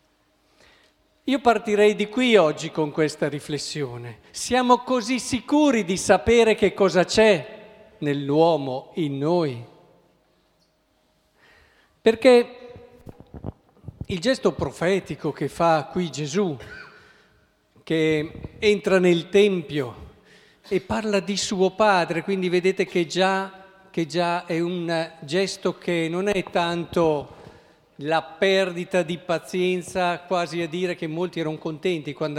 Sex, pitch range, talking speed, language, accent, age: male, 155-195 Hz, 110 wpm, Italian, native, 50-69